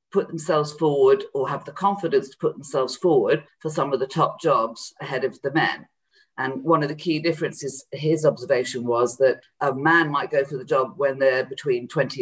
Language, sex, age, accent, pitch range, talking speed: English, female, 40-59, British, 140-185 Hz, 200 wpm